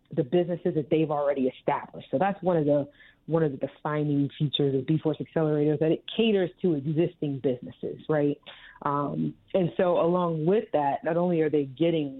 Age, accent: 30-49, American